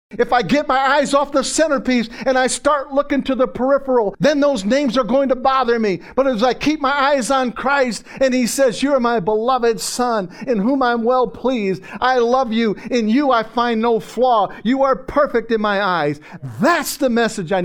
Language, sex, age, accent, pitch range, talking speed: English, male, 50-69, American, 175-240 Hz, 215 wpm